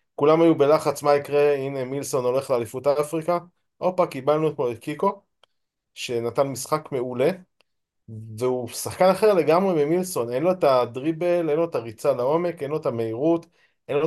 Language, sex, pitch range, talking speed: Hebrew, male, 130-175 Hz, 160 wpm